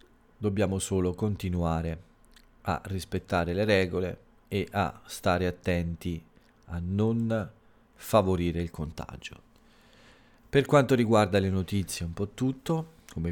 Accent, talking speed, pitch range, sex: native, 115 wpm, 85-110 Hz, male